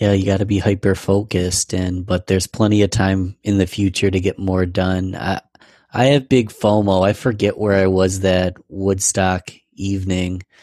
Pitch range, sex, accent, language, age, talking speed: 95-105 Hz, male, American, English, 30-49, 185 wpm